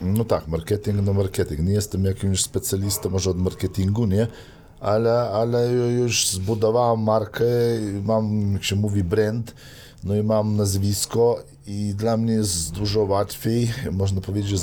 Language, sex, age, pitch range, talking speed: Polish, male, 50-69, 90-110 Hz, 150 wpm